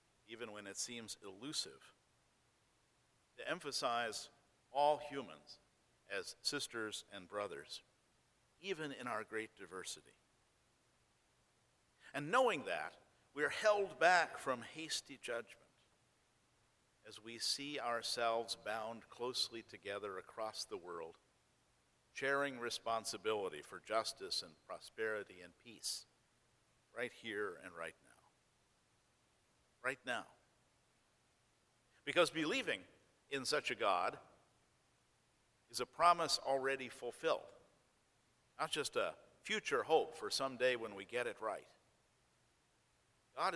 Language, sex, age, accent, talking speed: English, male, 50-69, American, 105 wpm